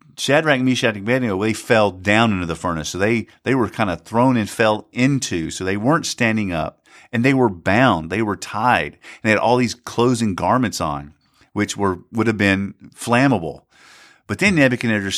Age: 50-69